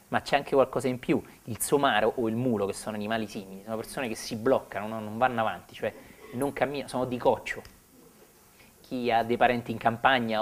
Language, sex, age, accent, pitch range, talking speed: Italian, male, 30-49, native, 110-135 Hz, 200 wpm